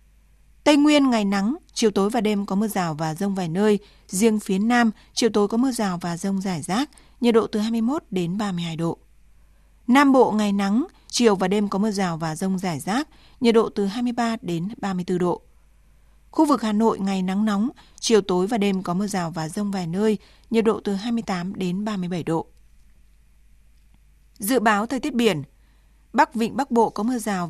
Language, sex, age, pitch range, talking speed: Vietnamese, female, 20-39, 190-230 Hz, 200 wpm